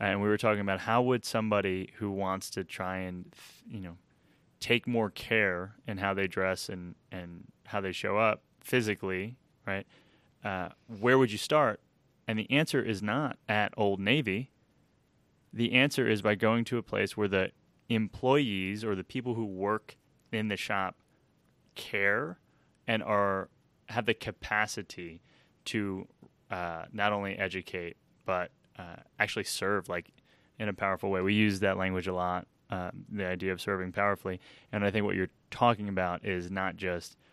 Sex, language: male, English